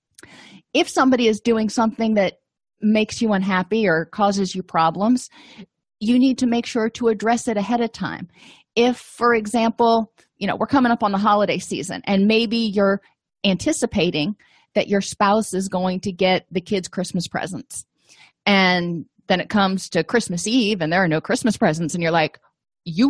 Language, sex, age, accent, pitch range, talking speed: English, female, 30-49, American, 185-235 Hz, 175 wpm